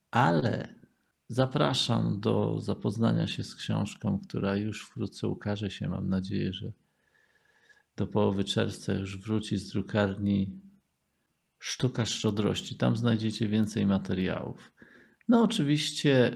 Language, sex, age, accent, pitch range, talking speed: Polish, male, 50-69, native, 100-120 Hz, 110 wpm